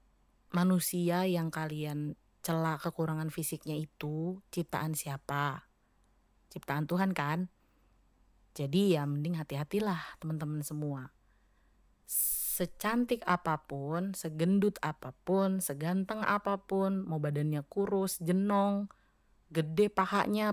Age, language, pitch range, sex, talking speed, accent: 30-49, Indonesian, 155-200 Hz, female, 90 wpm, native